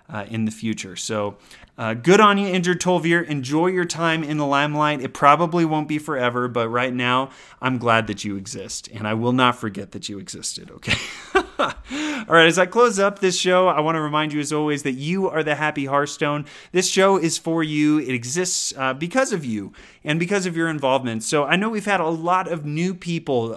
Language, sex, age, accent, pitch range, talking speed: English, male, 30-49, American, 120-160 Hz, 220 wpm